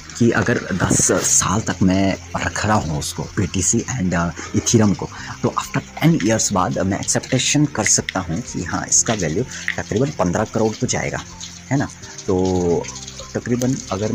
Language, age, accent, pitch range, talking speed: Hindi, 30-49, native, 90-110 Hz, 160 wpm